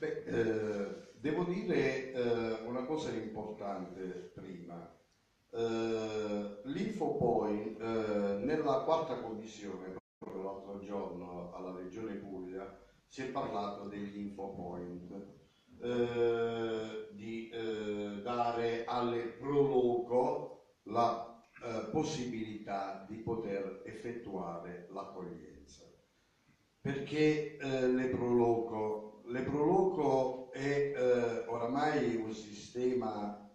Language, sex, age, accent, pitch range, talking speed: Italian, male, 50-69, native, 100-130 Hz, 90 wpm